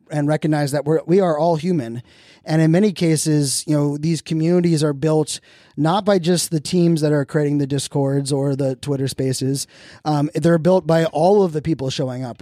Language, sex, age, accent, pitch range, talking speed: English, male, 20-39, American, 145-165 Hz, 205 wpm